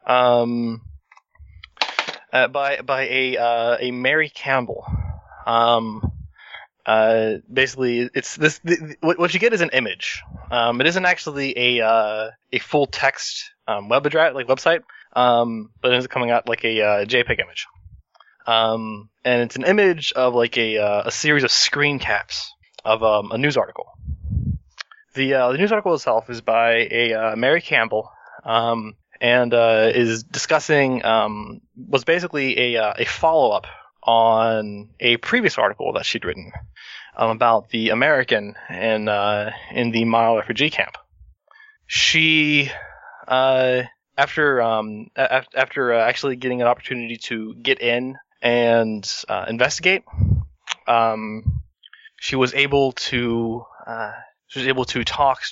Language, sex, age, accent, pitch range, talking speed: English, male, 20-39, American, 110-140 Hz, 145 wpm